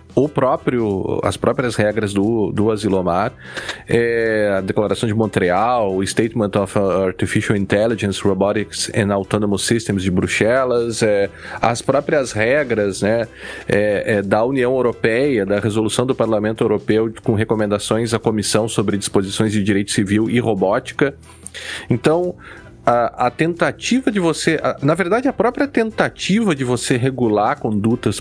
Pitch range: 105-130 Hz